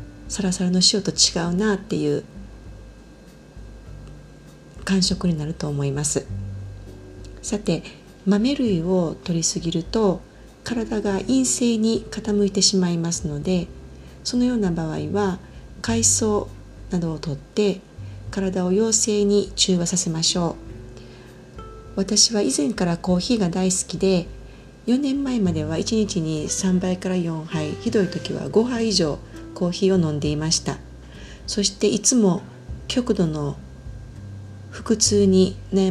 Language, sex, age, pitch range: Japanese, female, 40-59, 145-205 Hz